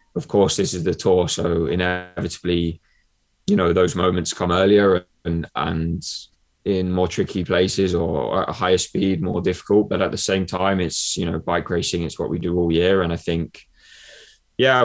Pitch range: 90-100 Hz